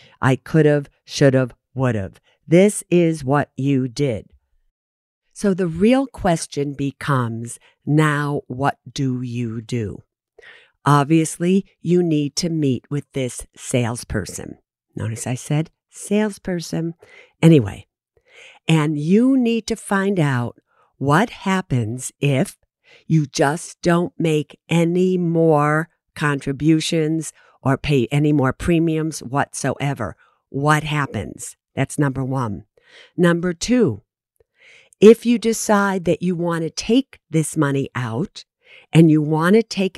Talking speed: 120 wpm